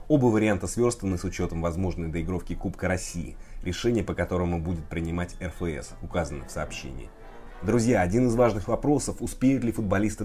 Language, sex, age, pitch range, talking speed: Russian, male, 30-49, 85-110 Hz, 150 wpm